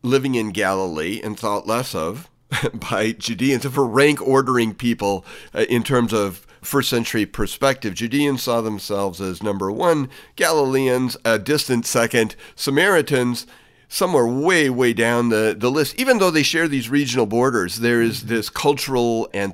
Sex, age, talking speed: male, 50-69, 150 wpm